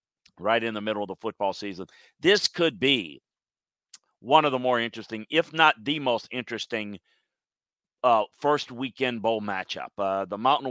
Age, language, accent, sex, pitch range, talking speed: 40-59, English, American, male, 110-135 Hz, 165 wpm